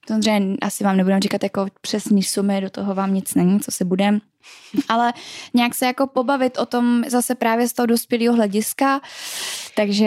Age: 10-29